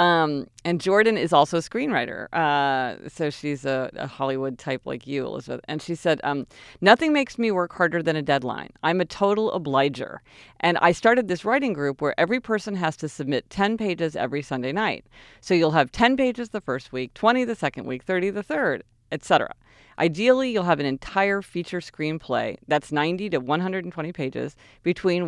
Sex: female